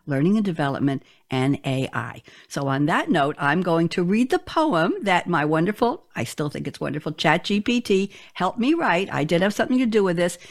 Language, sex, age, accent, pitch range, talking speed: English, female, 60-79, American, 155-225 Hz, 200 wpm